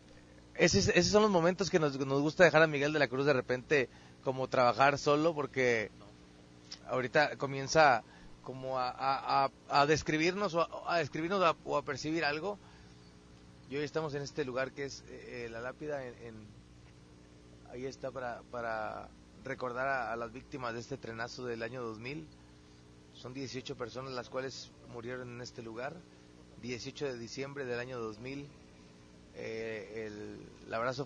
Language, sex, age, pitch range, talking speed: Spanish, male, 30-49, 105-135 Hz, 150 wpm